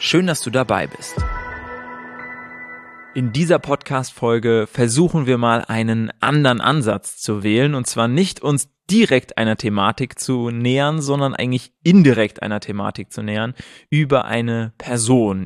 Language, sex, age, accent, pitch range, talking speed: German, male, 20-39, German, 115-145 Hz, 135 wpm